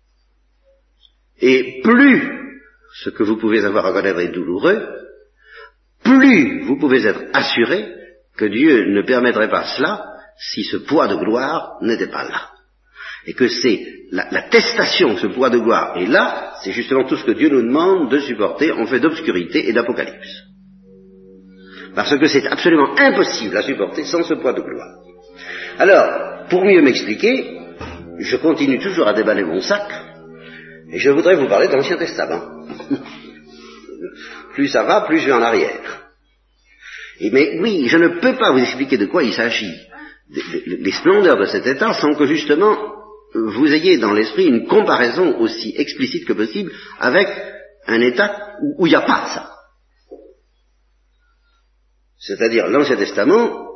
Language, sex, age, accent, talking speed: French, male, 50-69, French, 155 wpm